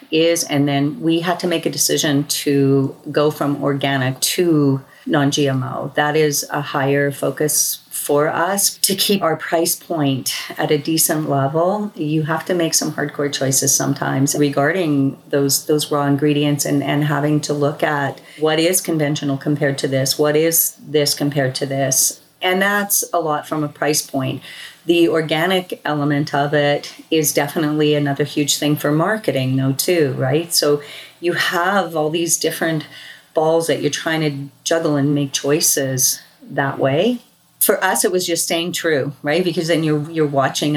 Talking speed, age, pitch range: 170 wpm, 40-59, 140-165 Hz